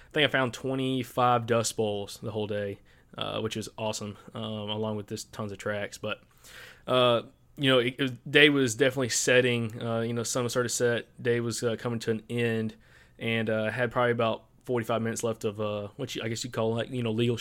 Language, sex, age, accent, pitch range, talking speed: English, male, 20-39, American, 110-125 Hz, 215 wpm